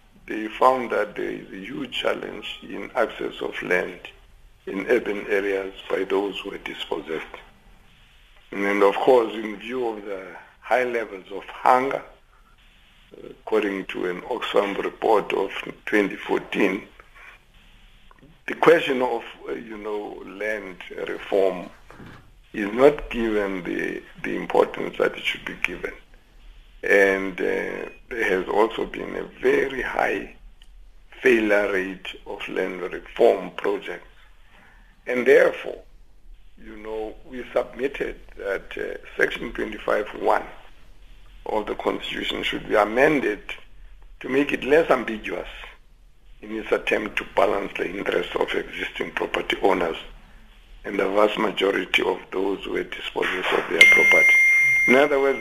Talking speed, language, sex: 130 wpm, English, male